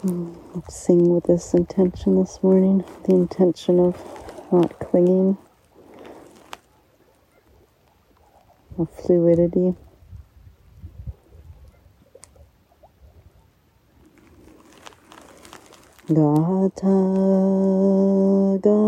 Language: English